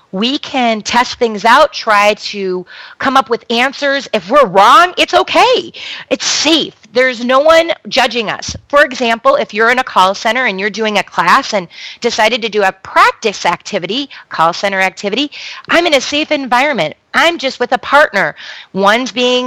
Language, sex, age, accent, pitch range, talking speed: English, female, 30-49, American, 200-285 Hz, 180 wpm